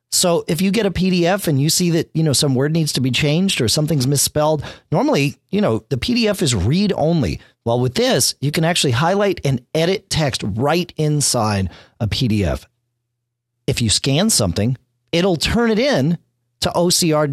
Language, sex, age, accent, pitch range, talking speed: English, male, 40-59, American, 115-160 Hz, 185 wpm